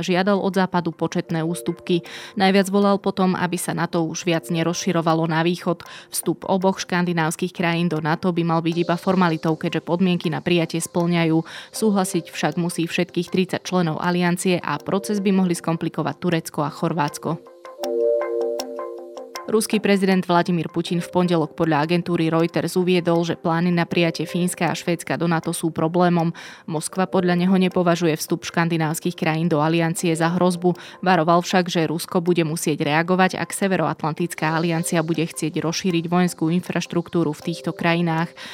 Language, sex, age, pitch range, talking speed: Slovak, female, 20-39, 165-180 Hz, 150 wpm